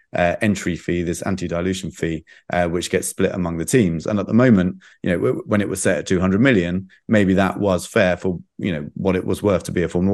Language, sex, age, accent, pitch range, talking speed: English, male, 30-49, British, 90-100 Hz, 245 wpm